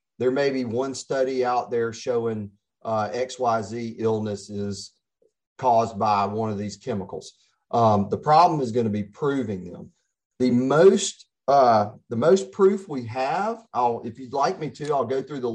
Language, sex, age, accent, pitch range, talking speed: English, male, 40-59, American, 115-160 Hz, 175 wpm